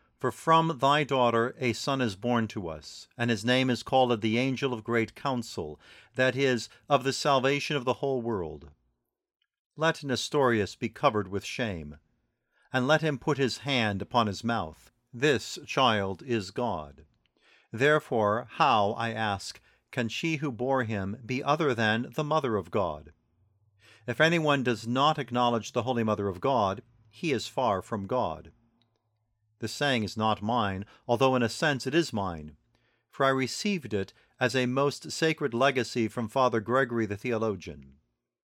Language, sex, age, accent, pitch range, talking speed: English, male, 50-69, American, 110-135 Hz, 165 wpm